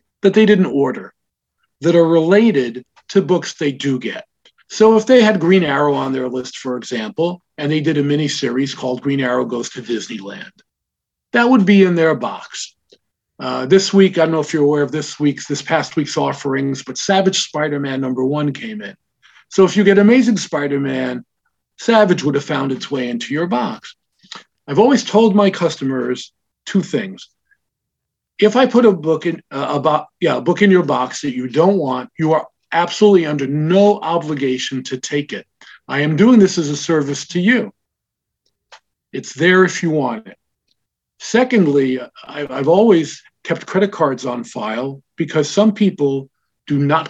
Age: 50-69